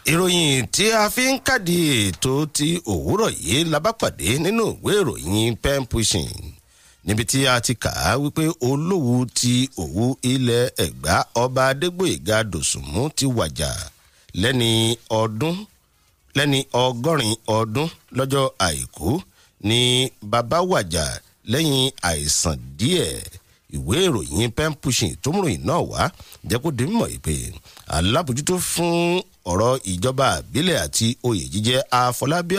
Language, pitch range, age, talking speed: English, 100-145 Hz, 50-69, 110 wpm